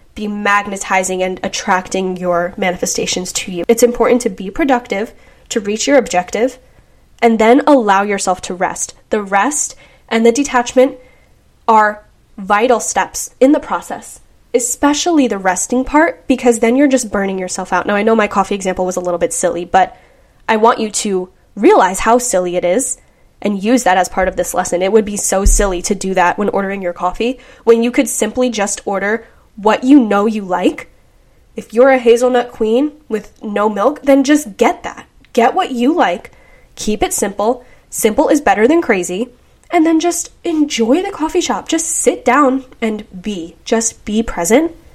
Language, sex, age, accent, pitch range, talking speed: English, female, 10-29, American, 195-255 Hz, 180 wpm